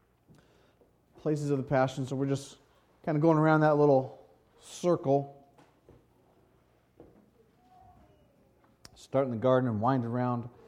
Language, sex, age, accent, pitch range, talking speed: English, male, 40-59, American, 125-165 Hz, 120 wpm